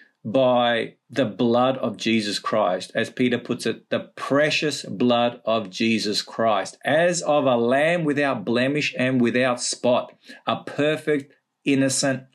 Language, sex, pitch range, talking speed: English, male, 120-145 Hz, 135 wpm